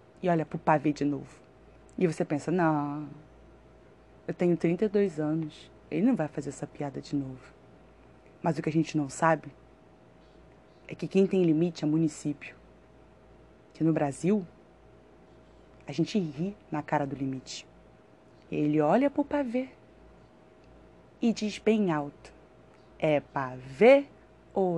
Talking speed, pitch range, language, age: 140 wpm, 150-235 Hz, Portuguese, 20-39